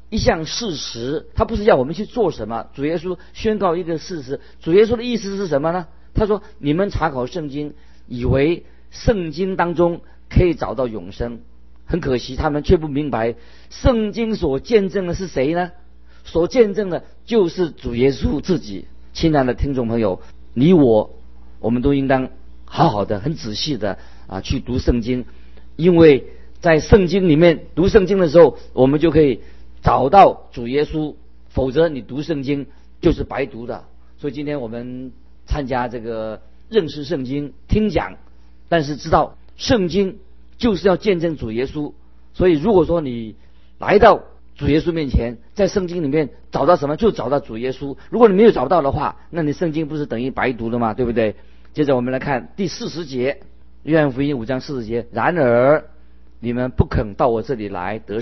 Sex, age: male, 50-69